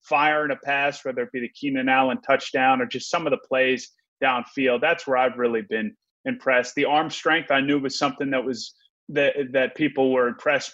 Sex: male